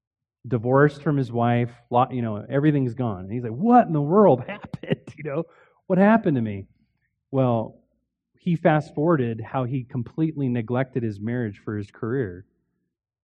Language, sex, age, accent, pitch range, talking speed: English, male, 30-49, American, 110-140 Hz, 155 wpm